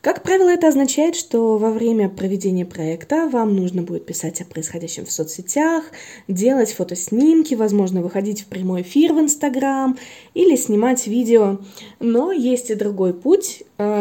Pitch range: 185-255 Hz